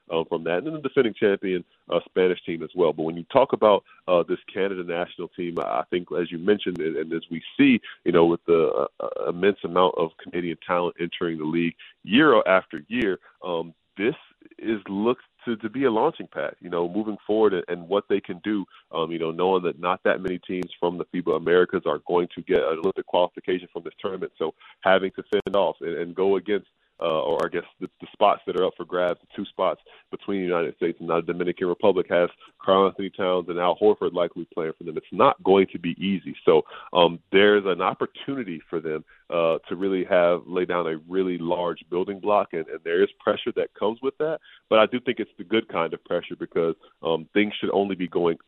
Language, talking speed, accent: English, 230 wpm, American